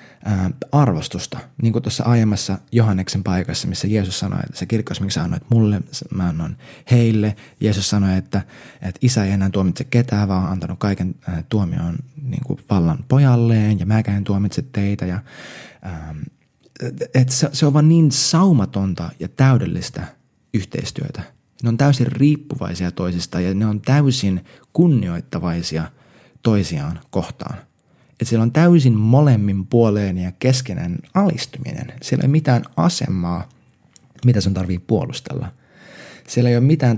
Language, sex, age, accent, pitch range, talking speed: Finnish, male, 20-39, native, 100-135 Hz, 145 wpm